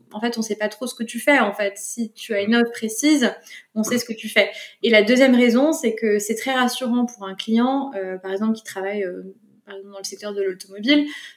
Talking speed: 255 wpm